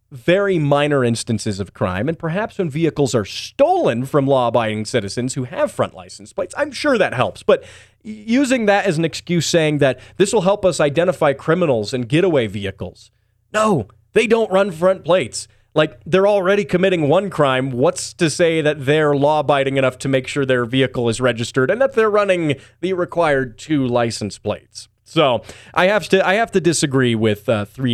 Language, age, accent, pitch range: English, 30-49, American, 110-175 Hz